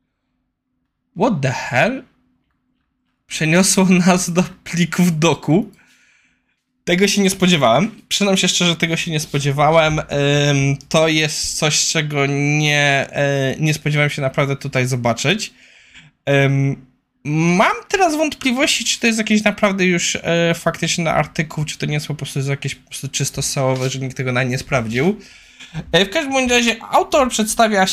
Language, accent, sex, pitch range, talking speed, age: Polish, native, male, 150-210 Hz, 130 wpm, 20-39